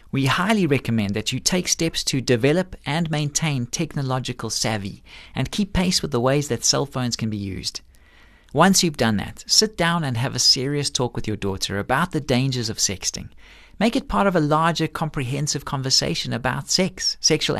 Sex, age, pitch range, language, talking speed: male, 50-69, 120-170 Hz, English, 190 wpm